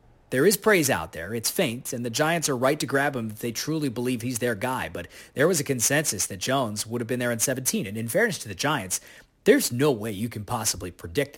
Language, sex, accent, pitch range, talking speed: English, male, American, 105-140 Hz, 255 wpm